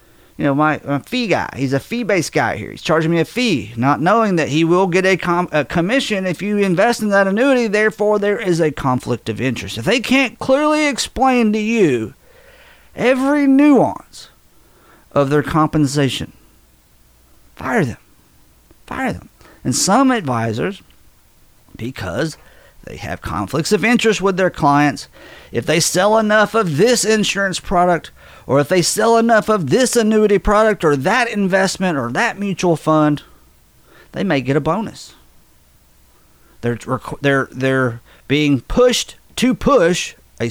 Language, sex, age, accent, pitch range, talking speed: English, male, 50-69, American, 140-215 Hz, 150 wpm